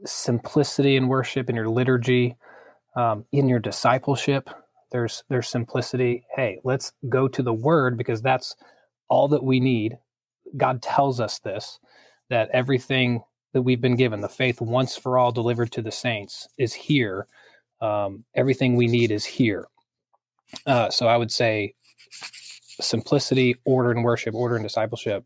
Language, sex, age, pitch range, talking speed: English, male, 20-39, 115-130 Hz, 150 wpm